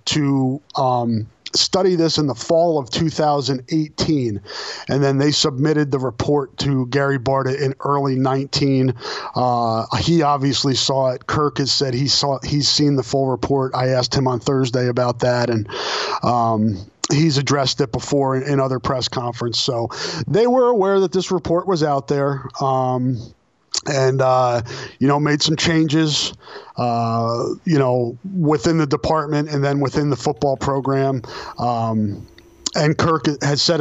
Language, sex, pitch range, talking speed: English, male, 130-150 Hz, 160 wpm